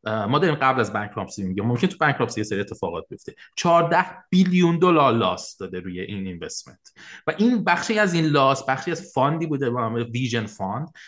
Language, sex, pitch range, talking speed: English, male, 110-160 Hz, 190 wpm